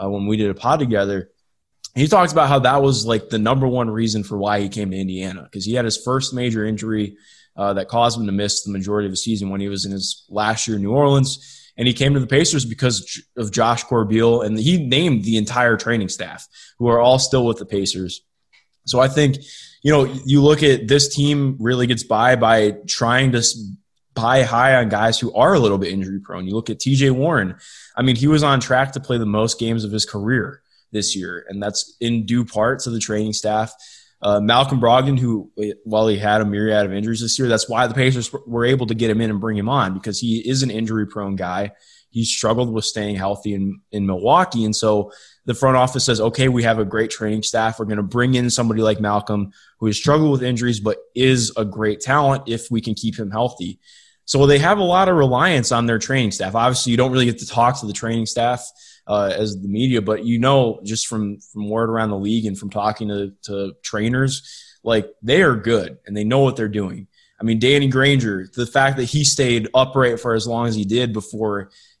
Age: 20-39